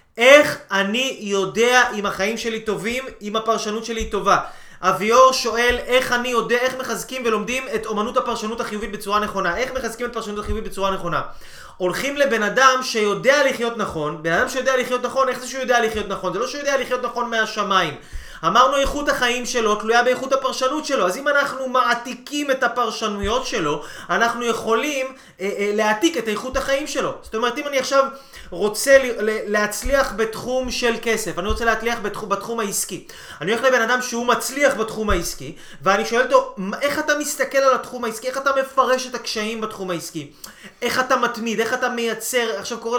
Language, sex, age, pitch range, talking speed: Hebrew, male, 20-39, 210-255 Hz, 180 wpm